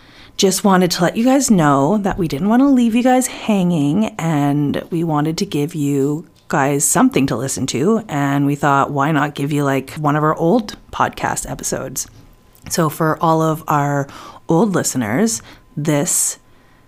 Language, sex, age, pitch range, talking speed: English, female, 30-49, 140-165 Hz, 175 wpm